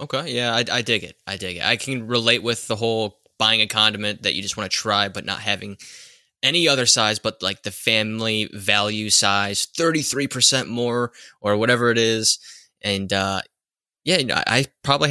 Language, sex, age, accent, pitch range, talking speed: English, male, 20-39, American, 105-135 Hz, 190 wpm